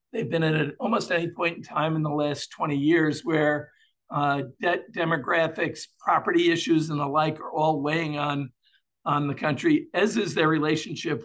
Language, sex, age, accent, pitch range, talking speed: English, male, 50-69, American, 150-175 Hz, 180 wpm